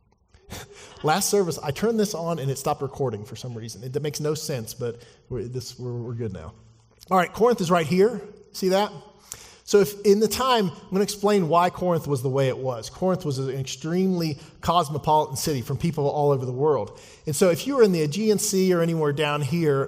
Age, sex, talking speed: 40-59, male, 215 wpm